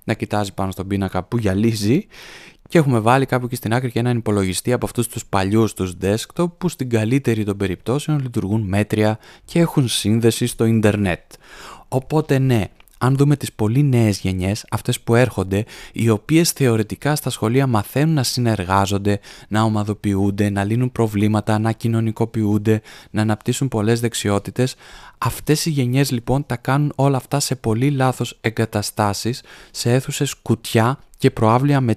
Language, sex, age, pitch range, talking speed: Greek, male, 20-39, 105-125 Hz, 155 wpm